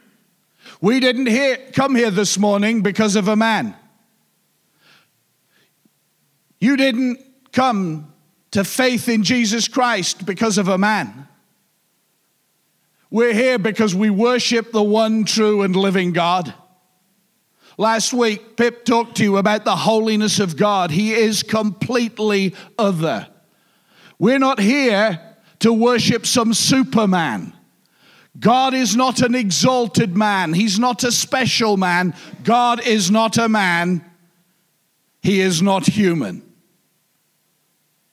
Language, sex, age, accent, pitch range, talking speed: English, male, 50-69, British, 190-235 Hz, 120 wpm